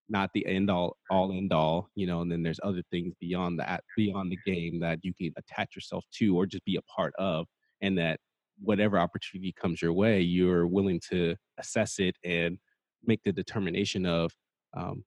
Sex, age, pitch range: male, 30-49, 85-110 Hz